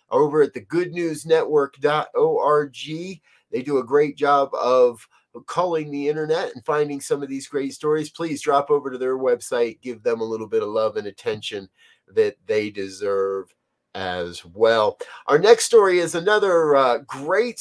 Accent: American